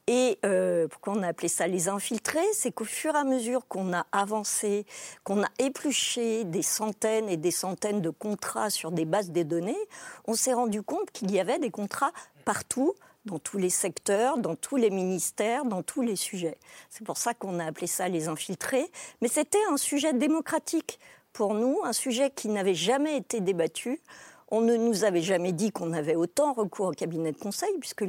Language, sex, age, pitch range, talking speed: French, female, 50-69, 185-255 Hz, 200 wpm